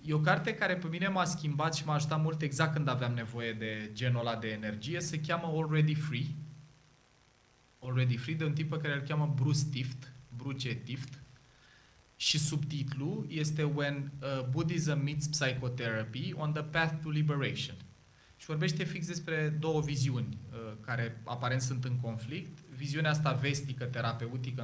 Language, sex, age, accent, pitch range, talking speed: Romanian, male, 20-39, native, 125-160 Hz, 160 wpm